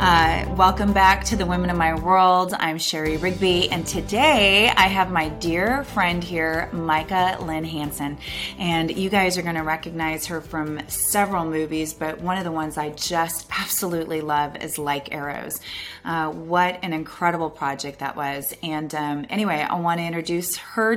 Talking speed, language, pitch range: 175 wpm, English, 160-190 Hz